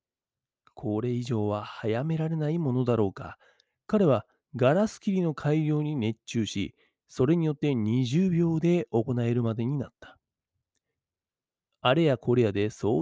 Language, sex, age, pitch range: Japanese, male, 40-59, 120-165 Hz